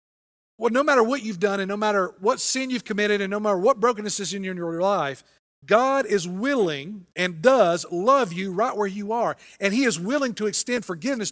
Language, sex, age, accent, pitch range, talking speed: English, male, 50-69, American, 170-215 Hz, 210 wpm